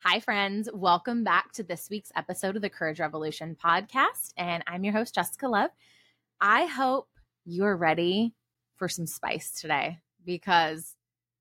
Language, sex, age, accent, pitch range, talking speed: English, female, 20-39, American, 165-215 Hz, 145 wpm